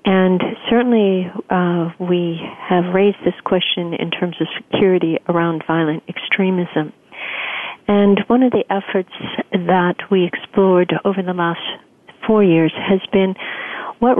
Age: 50-69